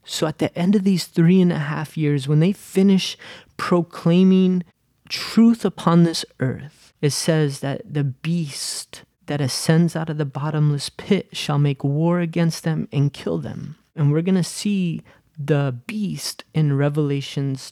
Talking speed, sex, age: 165 wpm, male, 20-39